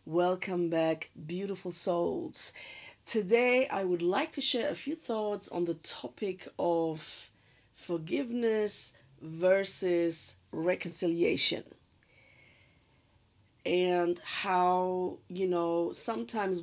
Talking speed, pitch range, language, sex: 90 wpm, 165-195 Hz, English, female